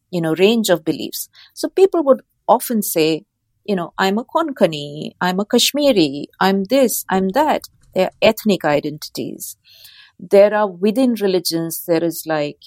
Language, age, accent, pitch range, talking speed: English, 50-69, Indian, 160-210 Hz, 150 wpm